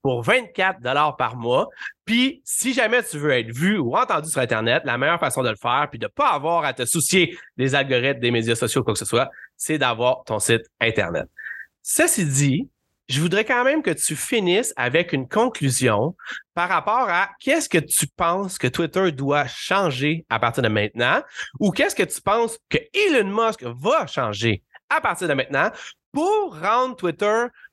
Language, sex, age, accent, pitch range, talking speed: French, male, 30-49, Canadian, 140-225 Hz, 190 wpm